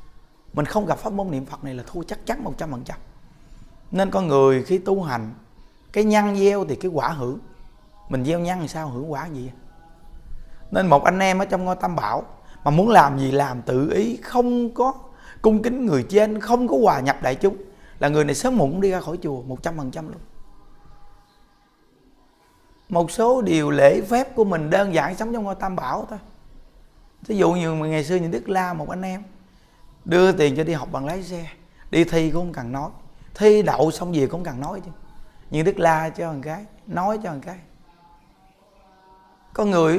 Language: Vietnamese